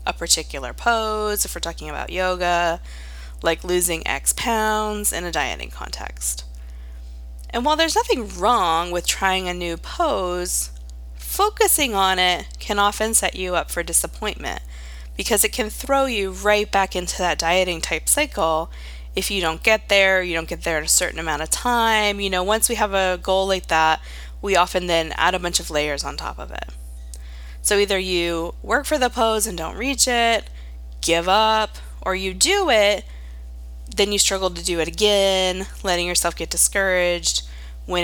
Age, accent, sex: 20-39, American, female